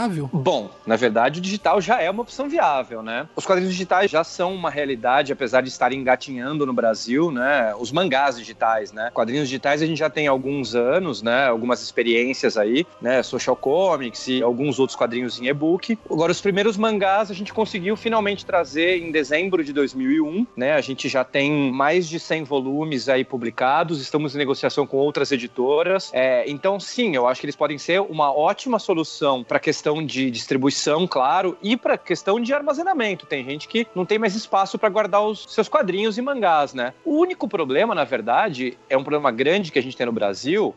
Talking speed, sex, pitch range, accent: 195 wpm, male, 140-210 Hz, Brazilian